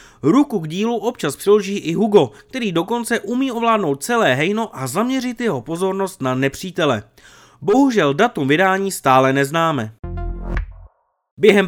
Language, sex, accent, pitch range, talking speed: Czech, male, native, 140-215 Hz, 130 wpm